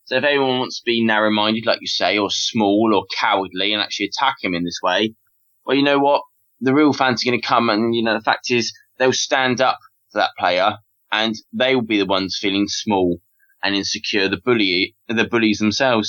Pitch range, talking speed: 115-165 Hz, 220 wpm